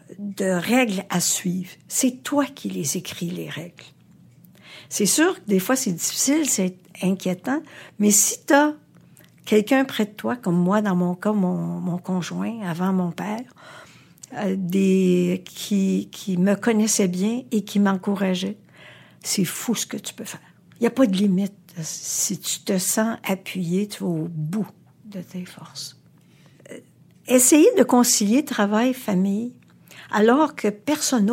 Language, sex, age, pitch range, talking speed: French, female, 60-79, 180-235 Hz, 155 wpm